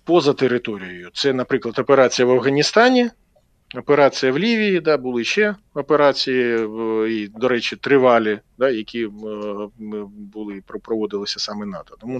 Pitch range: 105-140 Hz